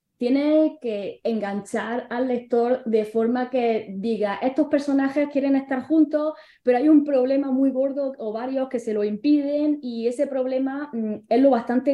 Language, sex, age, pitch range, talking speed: Spanish, female, 10-29, 220-275 Hz, 165 wpm